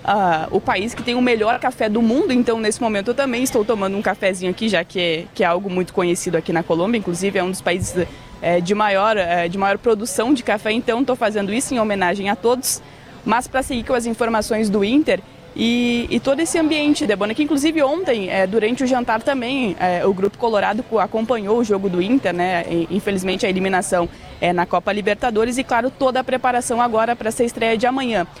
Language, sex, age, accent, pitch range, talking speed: Portuguese, female, 20-39, Brazilian, 195-260 Hz, 220 wpm